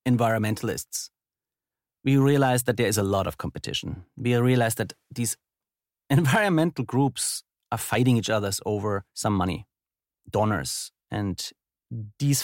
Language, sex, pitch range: English, male, 115-145 Hz